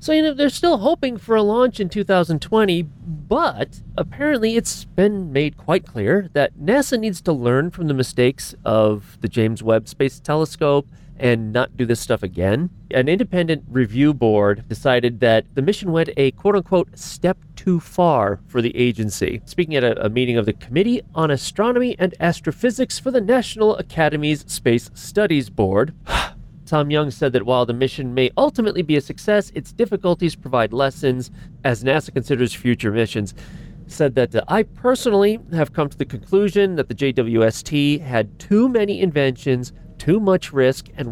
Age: 30-49